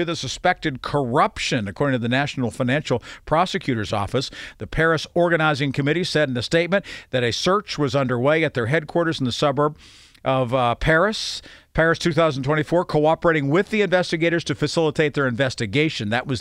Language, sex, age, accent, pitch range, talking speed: English, male, 50-69, American, 135-175 Hz, 160 wpm